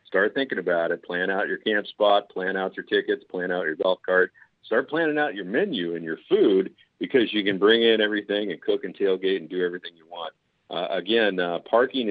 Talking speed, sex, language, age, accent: 225 wpm, male, English, 50-69, American